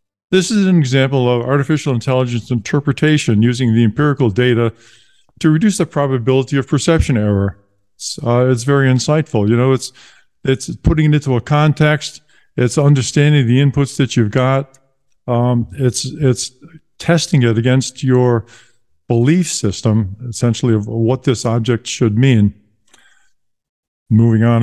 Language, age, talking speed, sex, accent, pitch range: English, 50-69, 140 wpm, male, American, 120-145 Hz